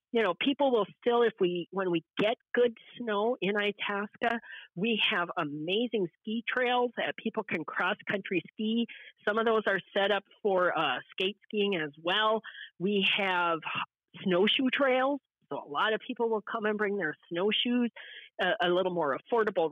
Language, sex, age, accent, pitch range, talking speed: English, female, 40-59, American, 185-230 Hz, 170 wpm